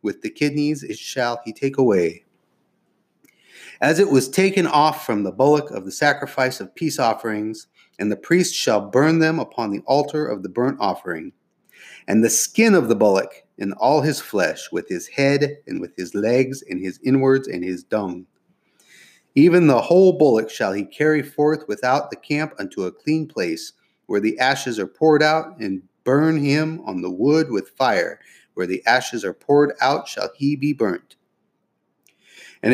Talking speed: 180 wpm